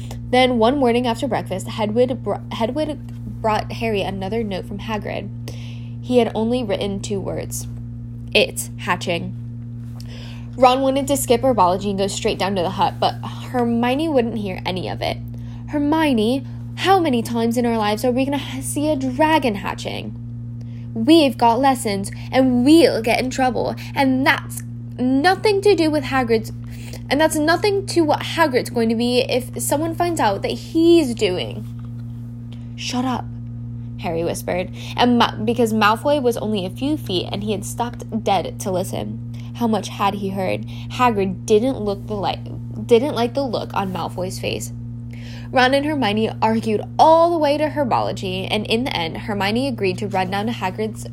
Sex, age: female, 10-29